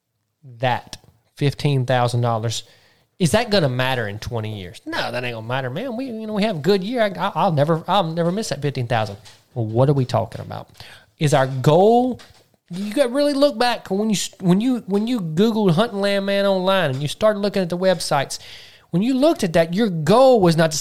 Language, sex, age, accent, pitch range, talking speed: English, male, 20-39, American, 130-195 Hz, 220 wpm